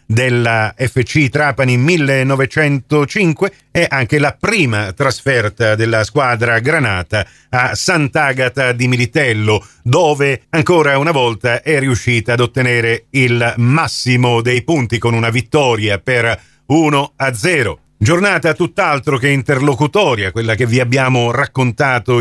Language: Italian